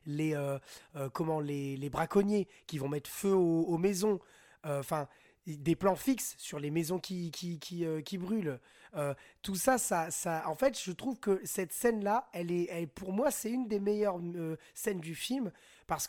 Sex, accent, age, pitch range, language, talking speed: male, French, 20-39, 160-220 Hz, French, 200 wpm